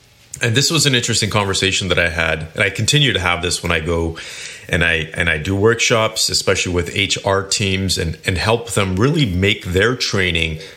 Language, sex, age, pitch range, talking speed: English, male, 30-49, 90-120 Hz, 200 wpm